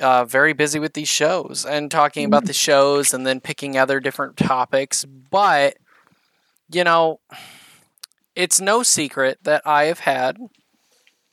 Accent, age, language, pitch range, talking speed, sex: American, 20-39, English, 135-165 Hz, 145 wpm, male